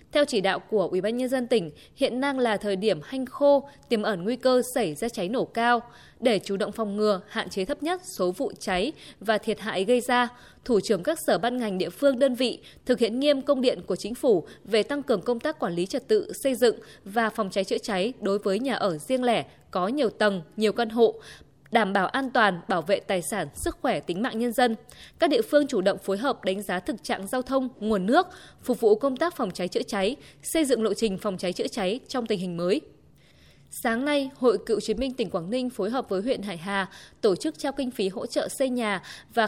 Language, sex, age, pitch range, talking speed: Vietnamese, female, 20-39, 200-260 Hz, 245 wpm